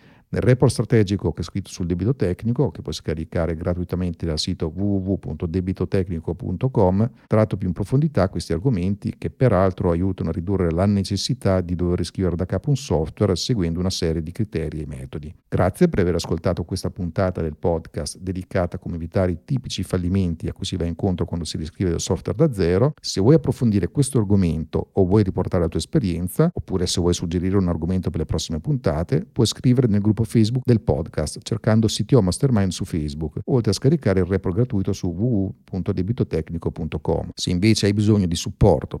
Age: 50-69